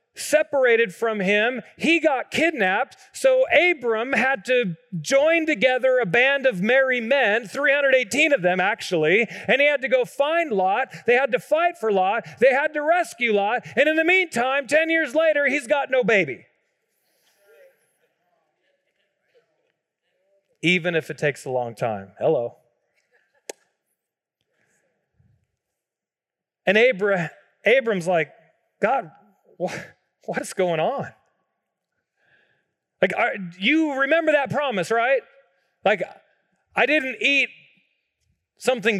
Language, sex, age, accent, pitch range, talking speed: English, male, 40-59, American, 170-280 Hz, 120 wpm